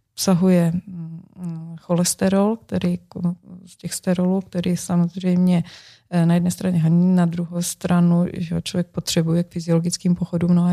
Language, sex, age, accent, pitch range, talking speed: Czech, female, 20-39, native, 170-185 Hz, 130 wpm